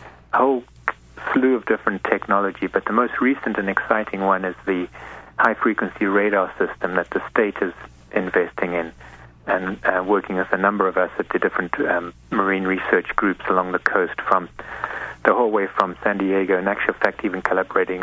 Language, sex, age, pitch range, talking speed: English, male, 30-49, 85-105 Hz, 185 wpm